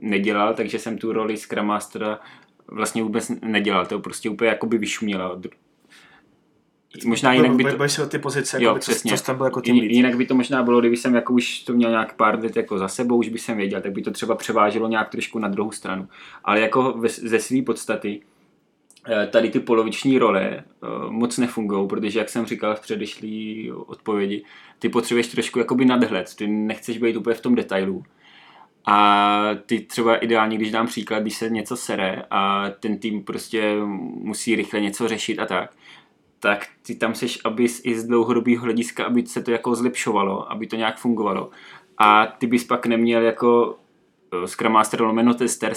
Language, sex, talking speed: Czech, male, 170 wpm